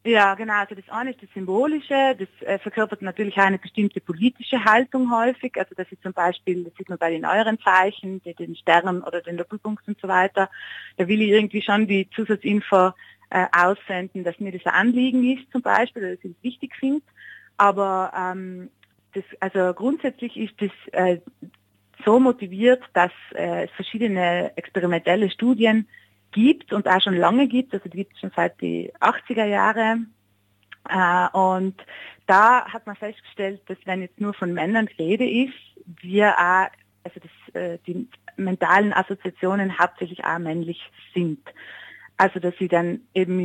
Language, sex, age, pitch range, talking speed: German, female, 30-49, 175-215 Hz, 160 wpm